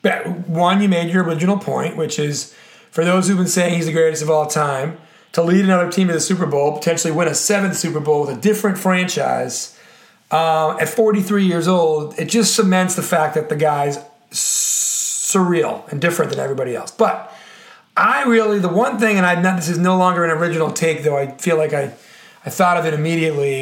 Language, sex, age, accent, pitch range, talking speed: English, male, 30-49, American, 160-205 Hz, 210 wpm